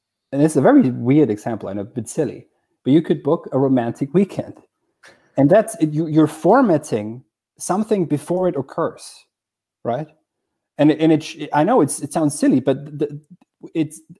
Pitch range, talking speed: 125-165 Hz, 165 wpm